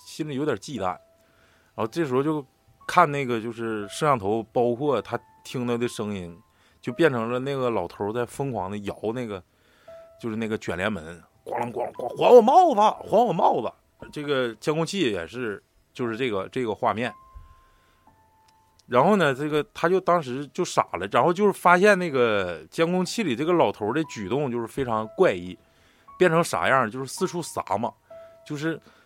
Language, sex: Chinese, male